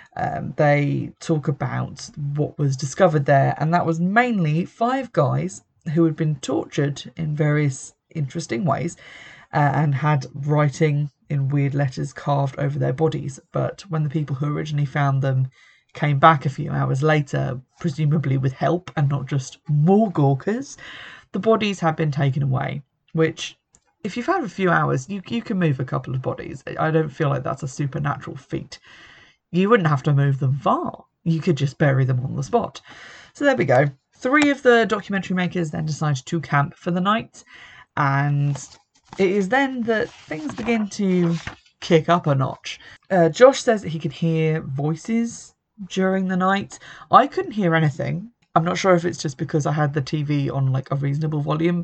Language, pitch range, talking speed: English, 145-175 Hz, 185 wpm